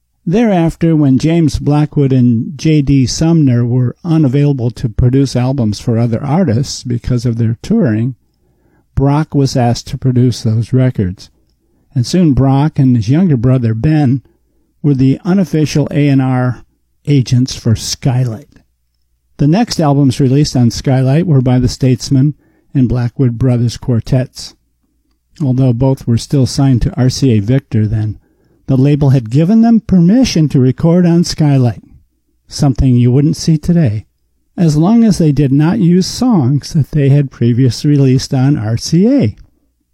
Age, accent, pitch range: 50-69, American, 120-150 Hz